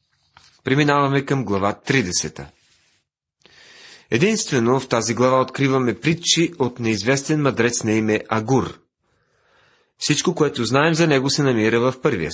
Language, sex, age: Bulgarian, male, 40-59